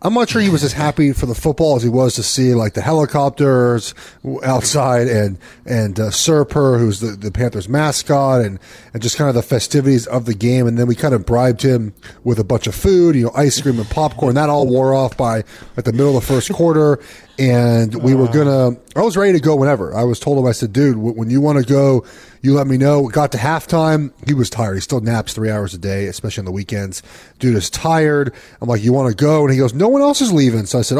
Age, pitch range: 30-49, 115-145 Hz